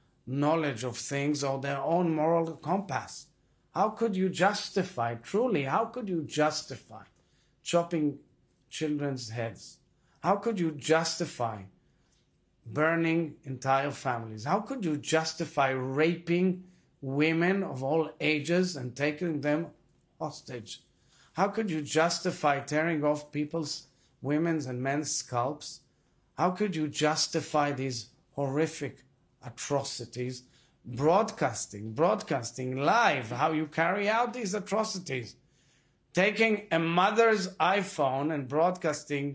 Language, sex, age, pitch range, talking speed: English, male, 50-69, 135-165 Hz, 110 wpm